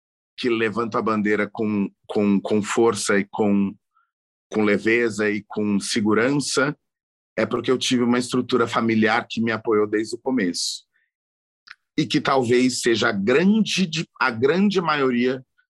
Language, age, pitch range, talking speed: Portuguese, 40-59, 100-130 Hz, 140 wpm